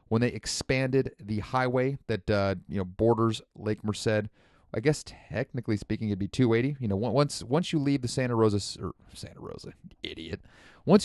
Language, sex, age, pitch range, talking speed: English, male, 30-49, 105-125 Hz, 180 wpm